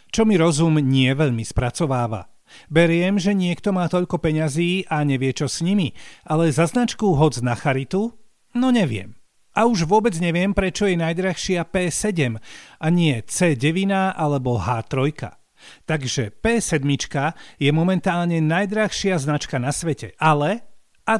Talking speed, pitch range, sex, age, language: 135 wpm, 140-195 Hz, male, 40-59, Slovak